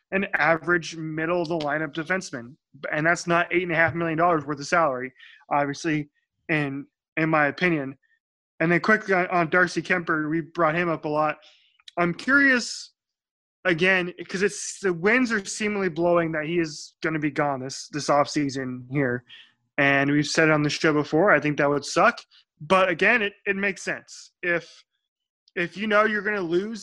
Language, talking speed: English, 185 wpm